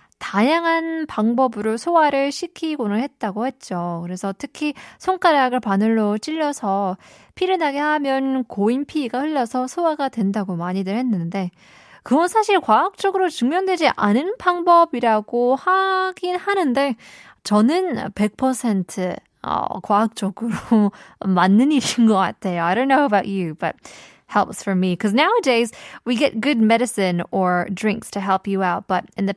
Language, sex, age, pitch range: Korean, female, 20-39, 195-280 Hz